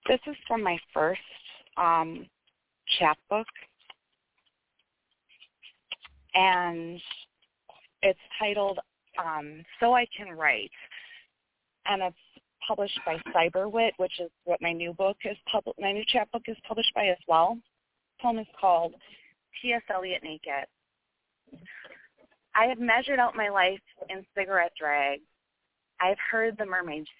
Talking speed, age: 115 wpm, 30-49